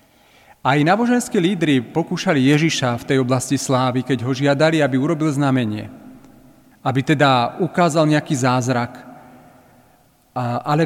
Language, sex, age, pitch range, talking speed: Slovak, male, 40-59, 130-160 Hz, 120 wpm